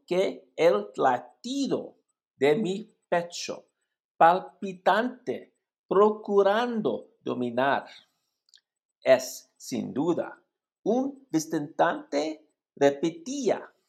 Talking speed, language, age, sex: 65 wpm, English, 50-69, male